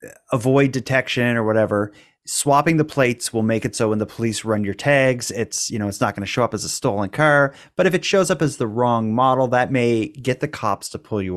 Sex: male